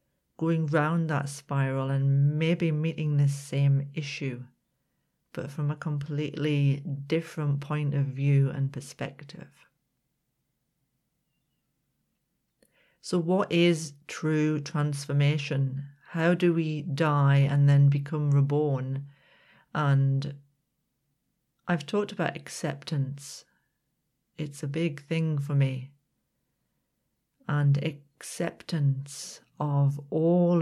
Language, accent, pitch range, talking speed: English, British, 140-160 Hz, 95 wpm